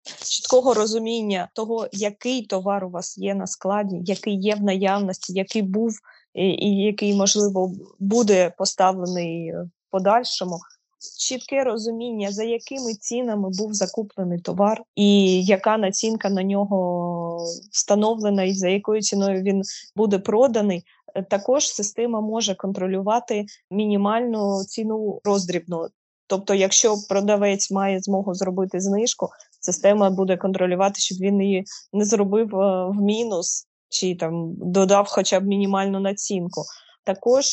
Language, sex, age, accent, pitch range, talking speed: Ukrainian, female, 20-39, native, 190-215 Hz, 125 wpm